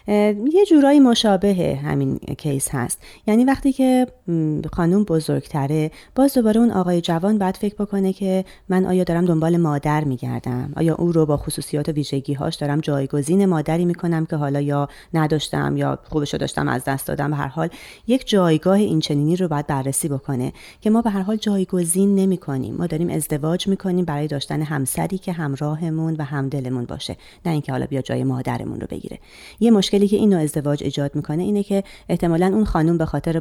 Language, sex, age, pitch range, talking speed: Persian, female, 30-49, 145-190 Hz, 175 wpm